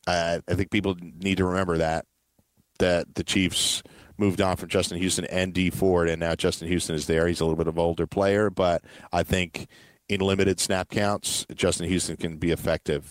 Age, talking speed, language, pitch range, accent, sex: 40-59, 205 wpm, English, 85-95 Hz, American, male